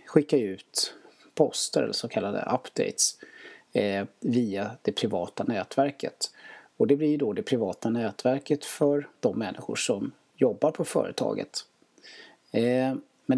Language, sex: Swedish, male